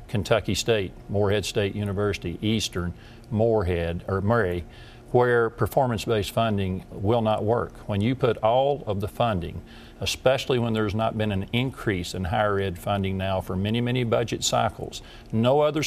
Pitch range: 100-120 Hz